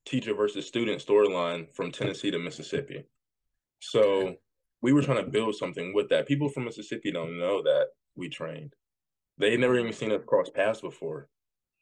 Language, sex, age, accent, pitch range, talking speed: English, male, 20-39, American, 95-145 Hz, 175 wpm